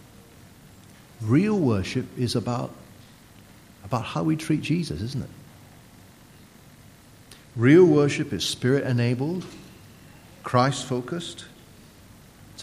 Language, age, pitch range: English, 40-59, 110-145 Hz